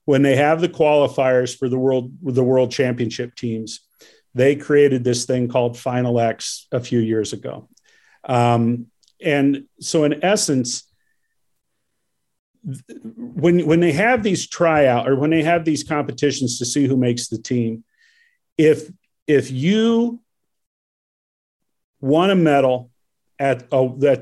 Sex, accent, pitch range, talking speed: male, American, 125-165 Hz, 135 wpm